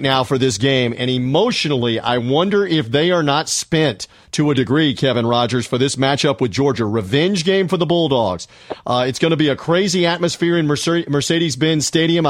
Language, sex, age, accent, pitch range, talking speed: English, male, 40-59, American, 140-170 Hz, 190 wpm